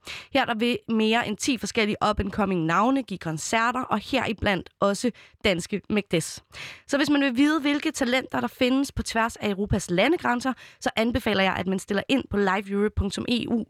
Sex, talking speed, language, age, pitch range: female, 170 wpm, Danish, 20-39, 195-260 Hz